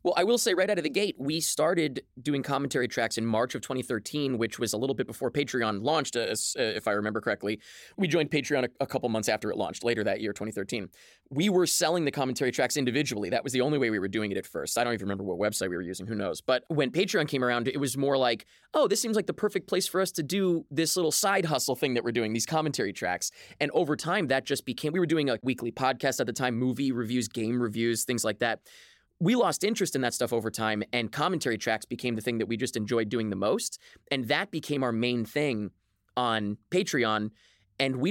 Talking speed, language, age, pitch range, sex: 245 wpm, English, 20-39, 115-150 Hz, male